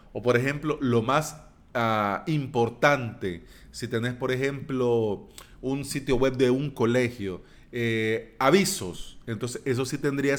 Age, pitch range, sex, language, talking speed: 40-59, 110-150 Hz, male, Spanish, 125 wpm